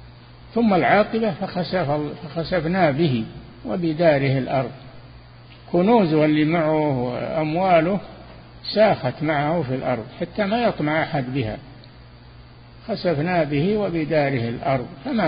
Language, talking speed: Arabic, 95 wpm